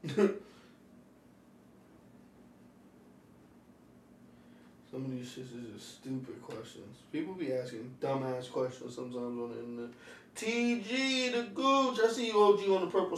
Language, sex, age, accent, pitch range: English, male, 20-39, American, 125-150 Hz